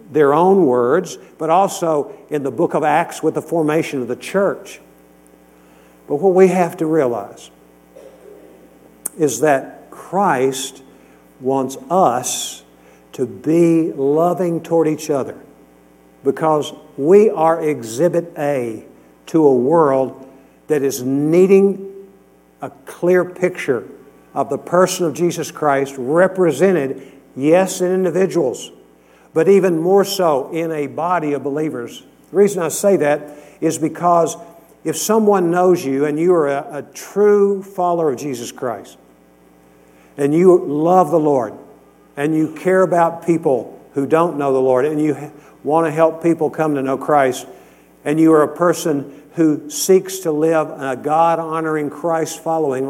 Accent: American